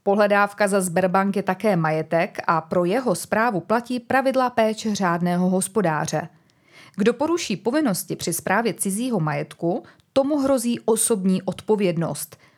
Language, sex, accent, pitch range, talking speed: Czech, female, native, 180-230 Hz, 125 wpm